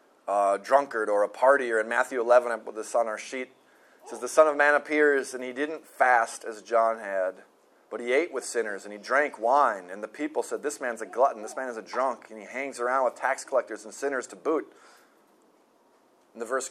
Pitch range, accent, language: 110-135 Hz, American, English